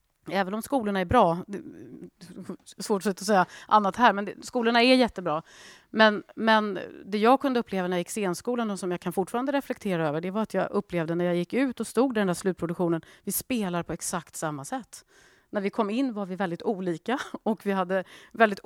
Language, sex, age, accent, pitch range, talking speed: Swedish, female, 30-49, native, 185-245 Hz, 210 wpm